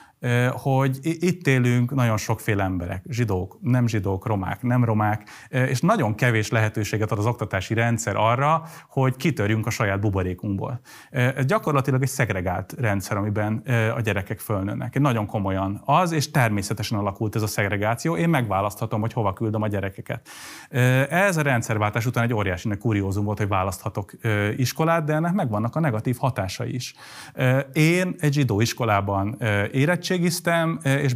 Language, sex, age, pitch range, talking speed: Hungarian, male, 30-49, 105-135 Hz, 145 wpm